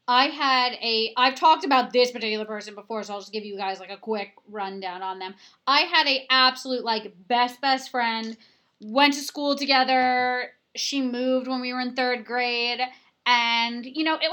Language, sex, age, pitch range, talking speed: English, female, 20-39, 235-270 Hz, 195 wpm